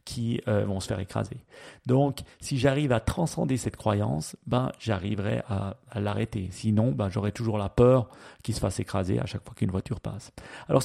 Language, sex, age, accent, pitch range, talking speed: French, male, 40-59, French, 105-130 Hz, 195 wpm